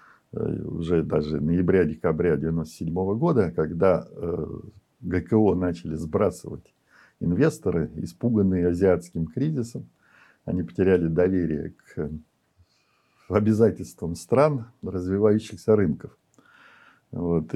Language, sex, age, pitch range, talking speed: Russian, male, 50-69, 85-115 Hz, 80 wpm